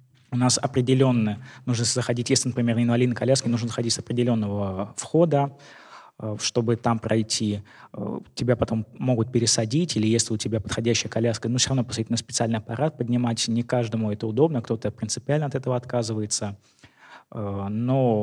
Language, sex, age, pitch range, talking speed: Russian, male, 20-39, 115-130 Hz, 150 wpm